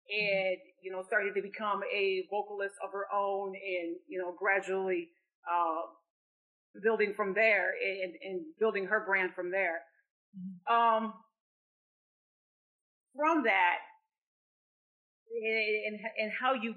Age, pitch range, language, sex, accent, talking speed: 40-59, 190-225 Hz, English, female, American, 120 wpm